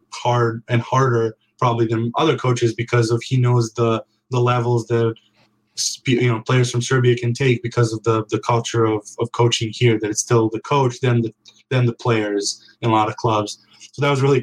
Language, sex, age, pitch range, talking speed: English, male, 20-39, 110-120 Hz, 210 wpm